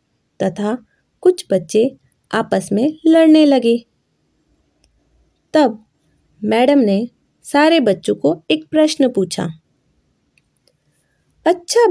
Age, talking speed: 20-39, 85 wpm